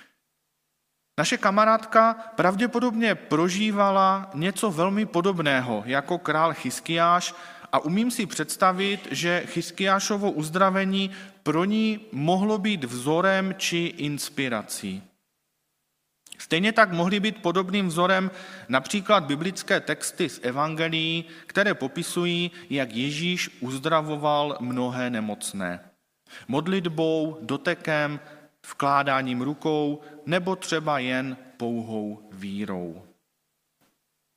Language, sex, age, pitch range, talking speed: Czech, male, 40-59, 130-185 Hz, 90 wpm